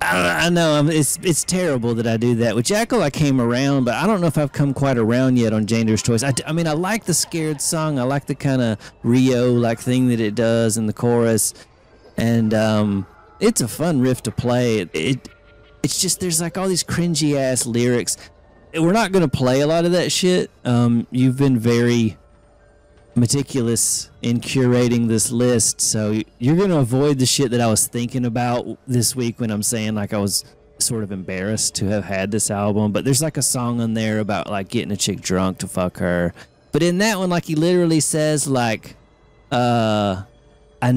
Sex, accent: male, American